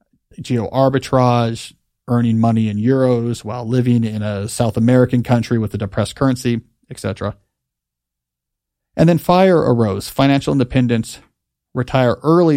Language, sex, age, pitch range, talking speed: English, male, 40-59, 110-140 Hz, 125 wpm